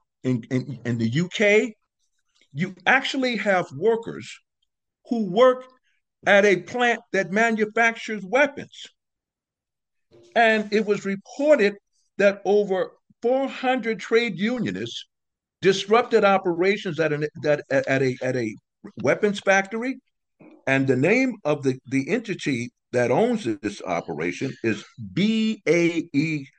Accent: American